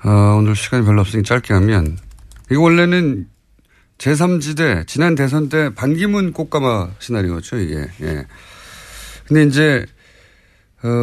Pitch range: 100-155 Hz